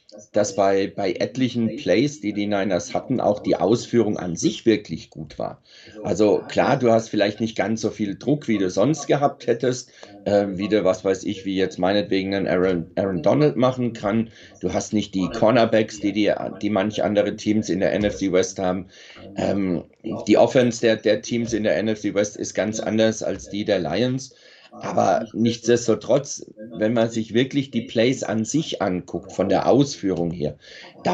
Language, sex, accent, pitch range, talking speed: German, male, German, 95-115 Hz, 185 wpm